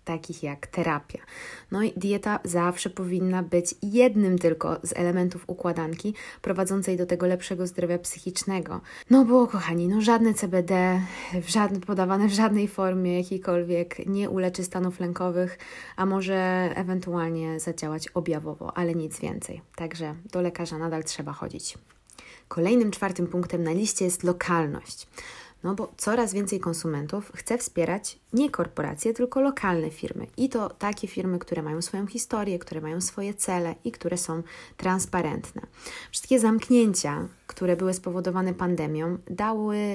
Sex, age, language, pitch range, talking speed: female, 20-39, Polish, 170-205 Hz, 140 wpm